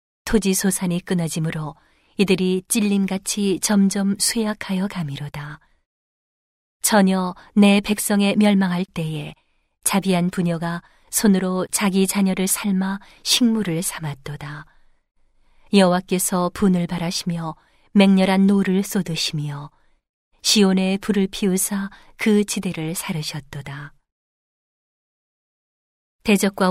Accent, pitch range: native, 170-205 Hz